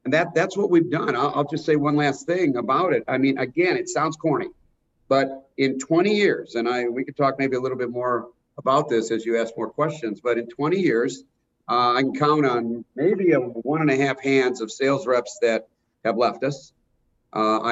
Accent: American